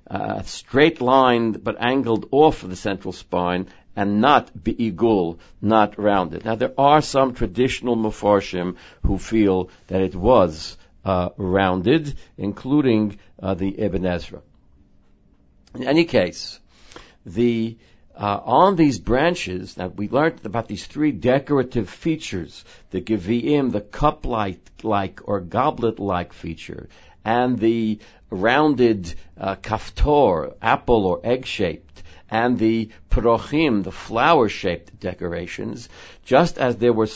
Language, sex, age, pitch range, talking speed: English, male, 60-79, 95-130 Hz, 125 wpm